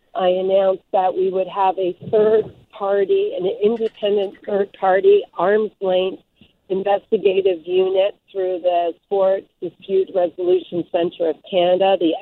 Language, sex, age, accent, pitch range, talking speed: English, female, 50-69, American, 185-220 Hz, 130 wpm